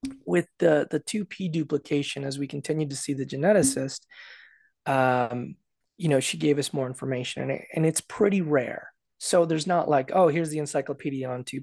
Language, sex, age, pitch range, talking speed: English, male, 20-39, 130-155 Hz, 190 wpm